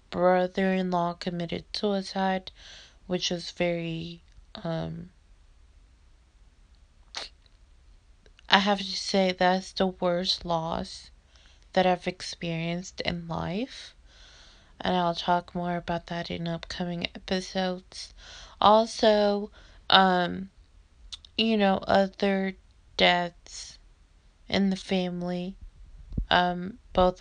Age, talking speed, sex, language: 20-39, 90 wpm, female, English